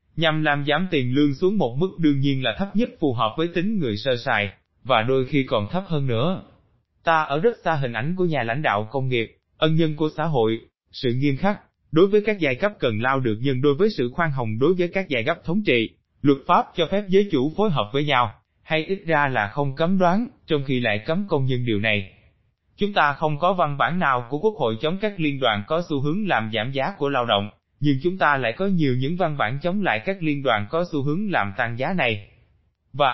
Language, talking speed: Vietnamese, 250 wpm